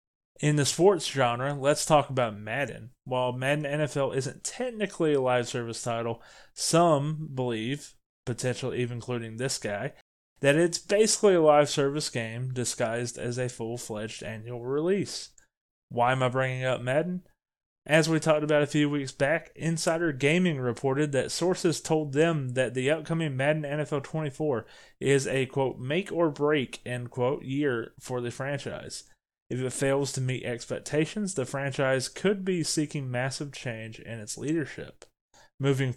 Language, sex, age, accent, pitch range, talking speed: English, male, 20-39, American, 125-155 Hz, 155 wpm